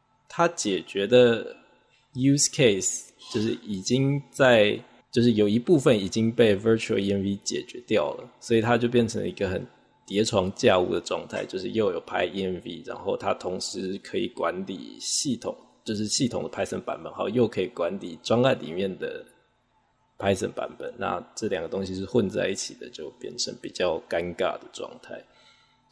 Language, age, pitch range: Chinese, 20-39, 95-125 Hz